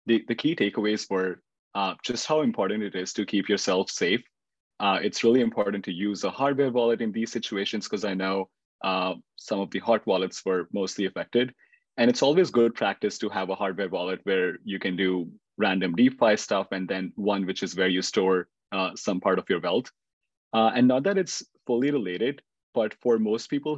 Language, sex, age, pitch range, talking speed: English, male, 30-49, 100-125 Hz, 200 wpm